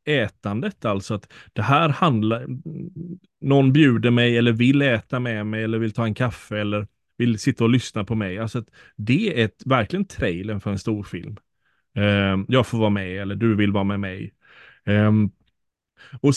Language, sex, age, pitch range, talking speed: Swedish, male, 30-49, 105-130 Hz, 175 wpm